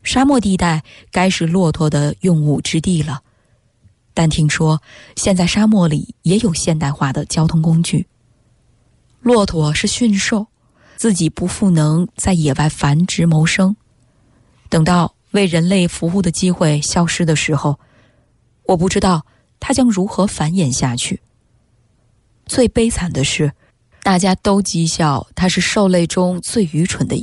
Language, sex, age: English, female, 20-39